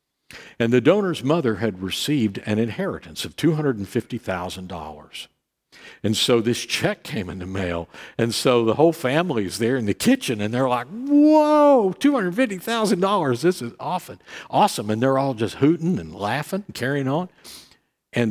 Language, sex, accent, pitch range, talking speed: English, male, American, 95-140 Hz, 155 wpm